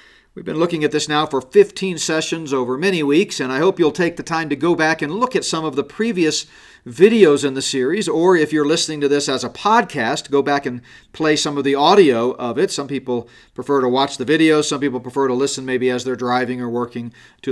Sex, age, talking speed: male, 40-59, 245 wpm